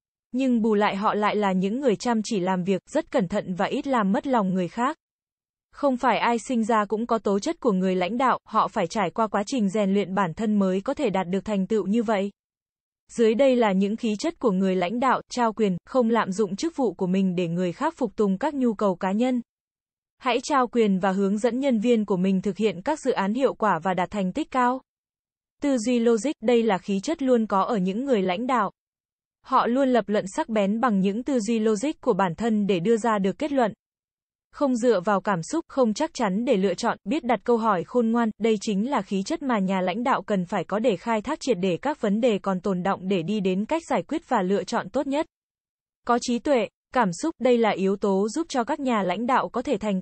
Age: 10-29